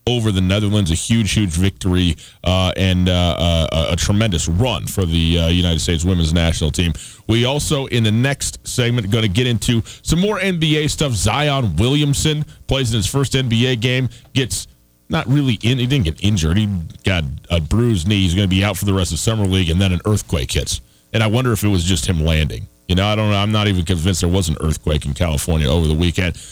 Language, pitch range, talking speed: English, 90-120 Hz, 230 wpm